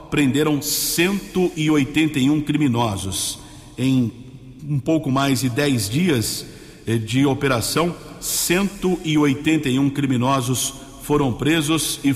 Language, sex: English, male